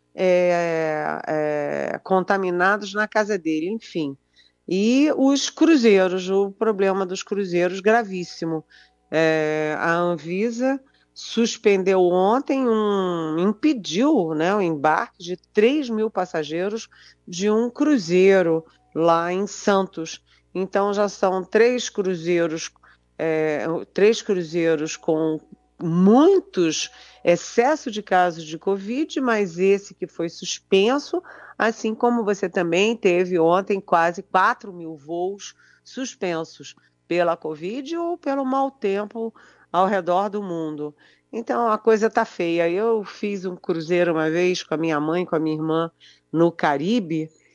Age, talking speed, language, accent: 40-59, 115 wpm, Portuguese, Brazilian